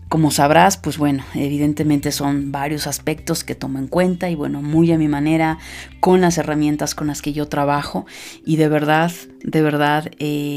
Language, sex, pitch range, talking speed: Spanish, female, 145-175 Hz, 180 wpm